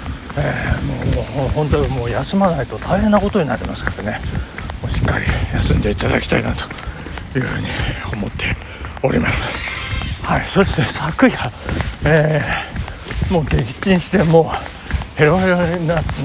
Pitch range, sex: 135-225 Hz, male